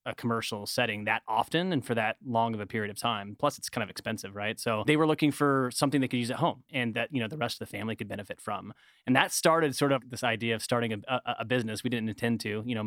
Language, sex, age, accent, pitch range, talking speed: English, male, 20-39, American, 110-130 Hz, 285 wpm